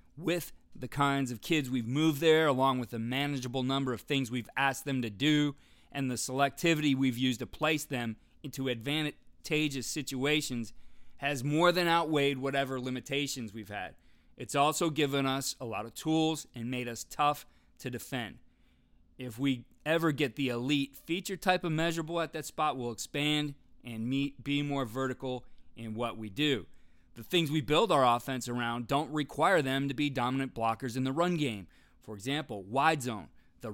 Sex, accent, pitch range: male, American, 120-150 Hz